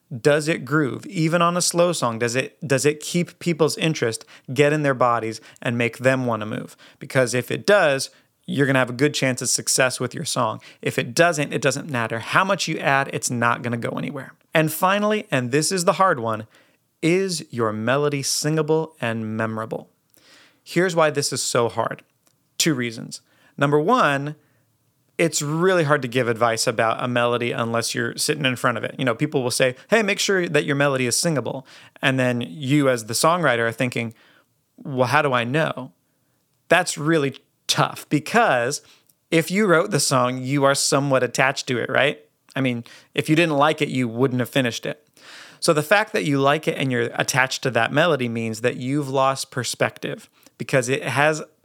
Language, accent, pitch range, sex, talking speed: English, American, 125-155 Hz, male, 200 wpm